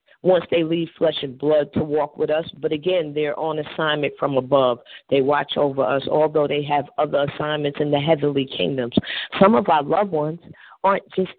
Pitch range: 170-230 Hz